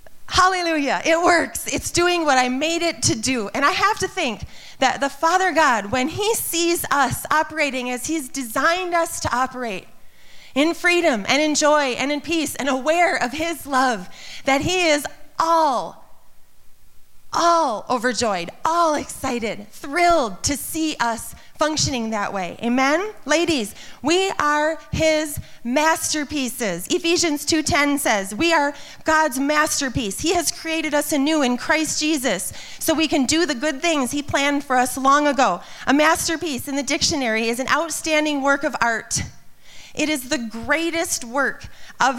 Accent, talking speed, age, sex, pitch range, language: American, 155 wpm, 30-49, female, 255-320 Hz, English